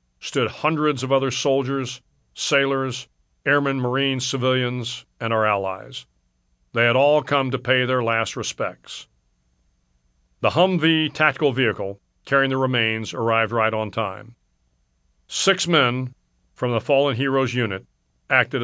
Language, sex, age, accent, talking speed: English, male, 50-69, American, 130 wpm